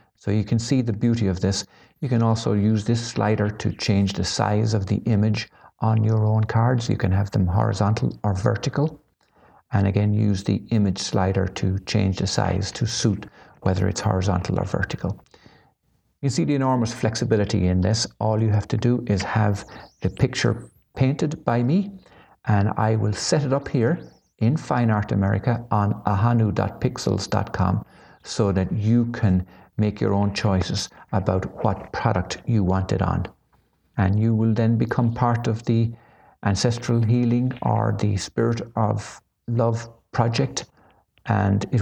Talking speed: 165 wpm